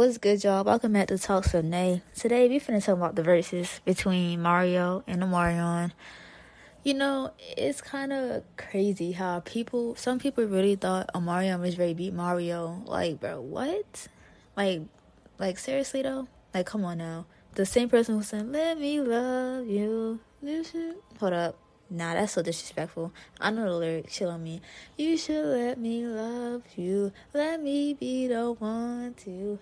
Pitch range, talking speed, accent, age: 180-255 Hz, 165 wpm, American, 20-39